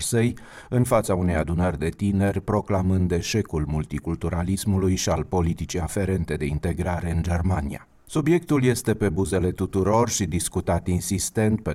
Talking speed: 135 wpm